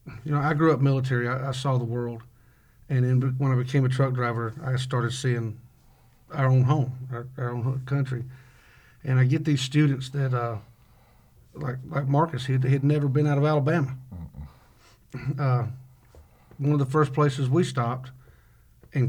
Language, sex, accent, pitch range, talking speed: English, male, American, 120-135 Hz, 175 wpm